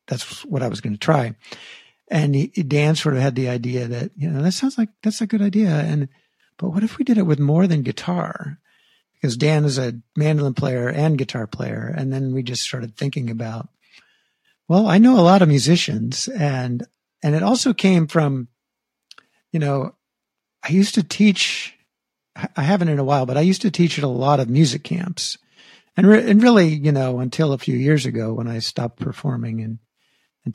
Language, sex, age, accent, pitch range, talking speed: English, male, 50-69, American, 130-180 Hz, 200 wpm